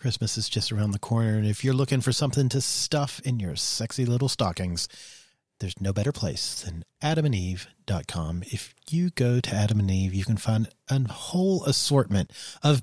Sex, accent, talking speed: male, American, 185 wpm